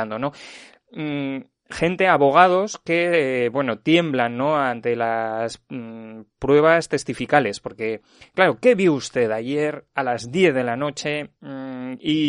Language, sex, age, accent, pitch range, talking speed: Spanish, male, 20-39, Spanish, 120-160 Hz, 115 wpm